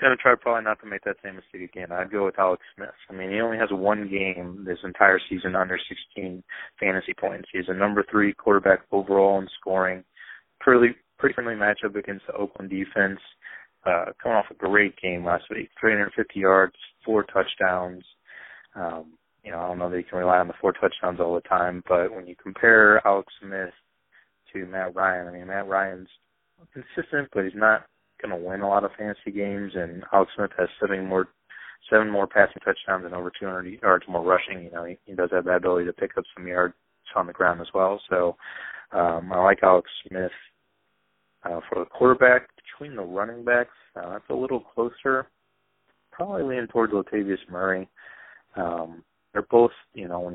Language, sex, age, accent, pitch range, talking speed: English, male, 20-39, American, 90-100 Hz, 200 wpm